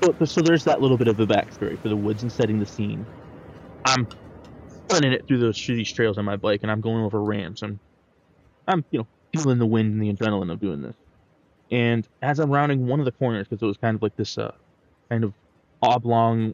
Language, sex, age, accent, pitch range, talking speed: English, male, 20-39, American, 105-125 Hz, 230 wpm